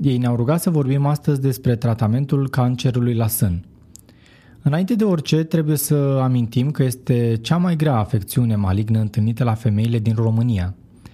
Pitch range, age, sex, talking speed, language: 115-145 Hz, 20-39, male, 155 wpm, Romanian